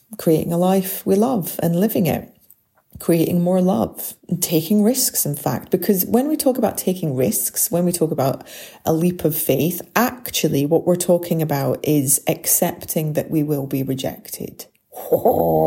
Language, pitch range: English, 165-220 Hz